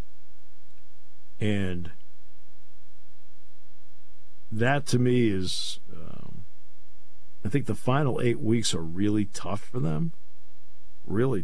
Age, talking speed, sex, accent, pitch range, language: 50-69, 95 wpm, male, American, 75-110 Hz, English